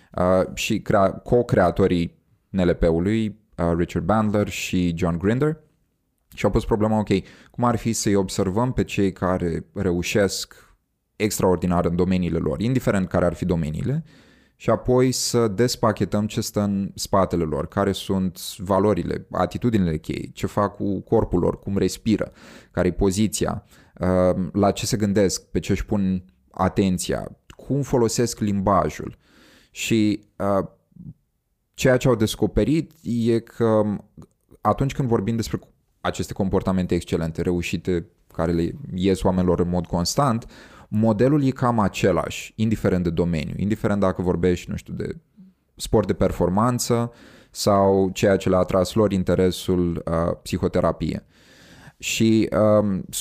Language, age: Romanian, 20-39